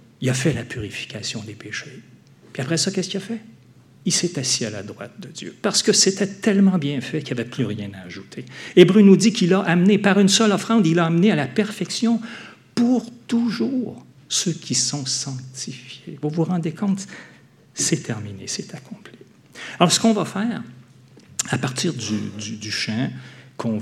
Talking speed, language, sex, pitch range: 195 wpm, French, male, 120-185 Hz